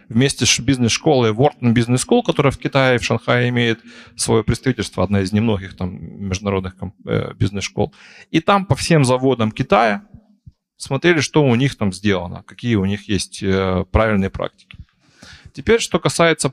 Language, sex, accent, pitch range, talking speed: Ukrainian, male, native, 110-155 Hz, 155 wpm